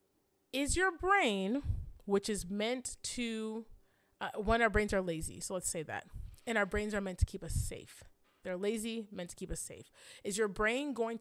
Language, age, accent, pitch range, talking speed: English, 30-49, American, 185-235 Hz, 200 wpm